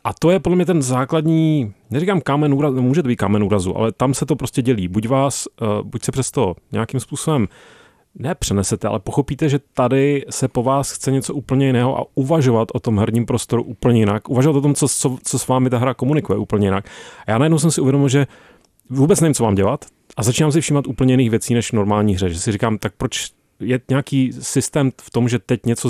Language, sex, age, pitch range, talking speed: Czech, male, 30-49, 110-135 Hz, 225 wpm